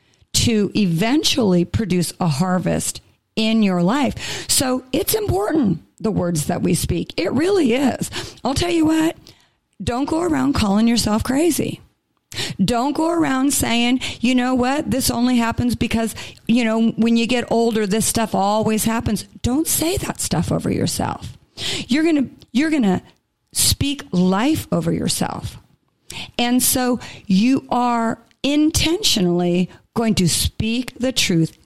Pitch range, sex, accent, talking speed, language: 180-250 Hz, female, American, 140 wpm, English